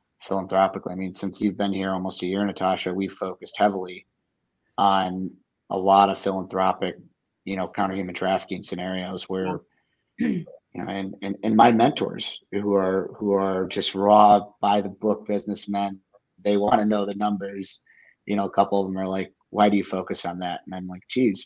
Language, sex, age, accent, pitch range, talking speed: English, male, 30-49, American, 95-105 Hz, 185 wpm